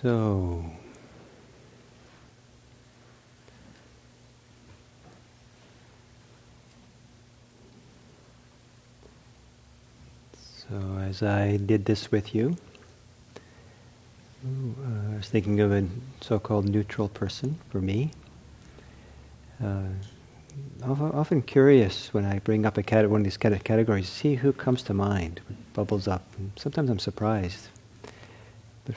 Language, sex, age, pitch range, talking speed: English, male, 50-69, 100-120 Hz, 95 wpm